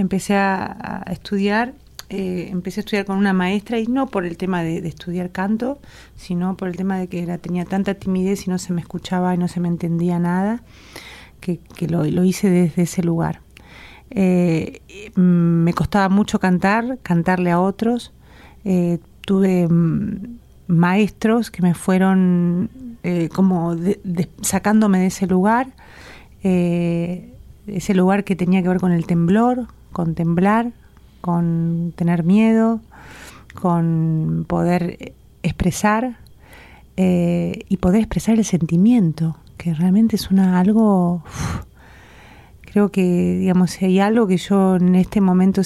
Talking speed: 145 wpm